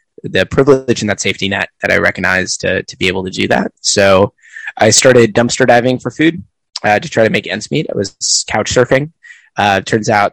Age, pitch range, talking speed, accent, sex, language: 20-39, 100-130 Hz, 215 wpm, American, male, English